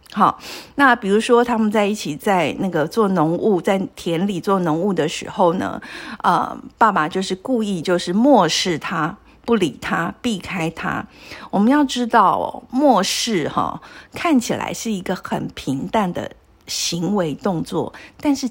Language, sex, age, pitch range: Chinese, female, 50-69, 195-265 Hz